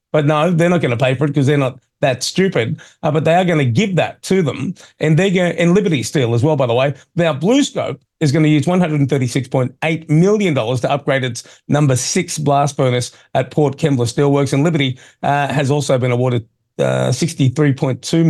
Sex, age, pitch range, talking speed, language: male, 40-59, 130-160 Hz, 210 wpm, English